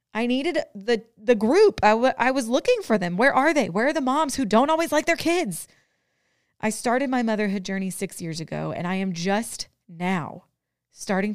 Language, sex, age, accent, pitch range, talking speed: English, female, 30-49, American, 175-235 Hz, 205 wpm